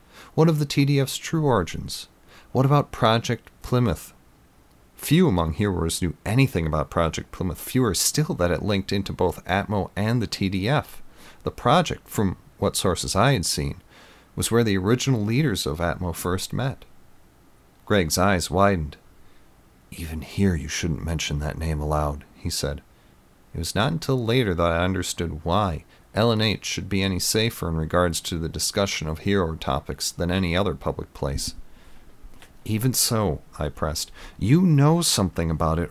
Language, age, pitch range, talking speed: English, 40-59, 80-105 Hz, 160 wpm